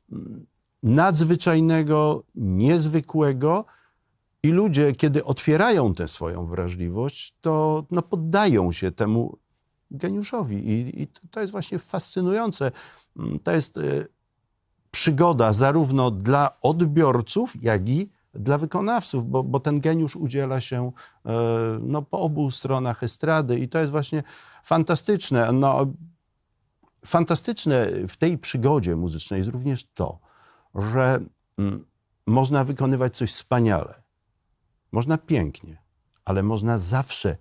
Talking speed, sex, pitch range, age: 100 wpm, male, 110-160 Hz, 50-69